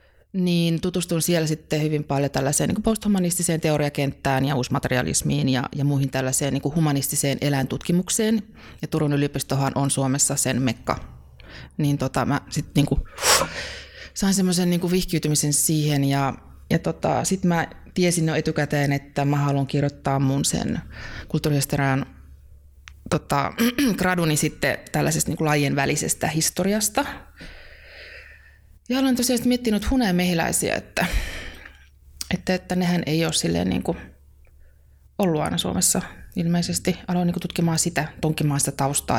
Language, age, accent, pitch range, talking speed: Finnish, 20-39, native, 135-175 Hz, 120 wpm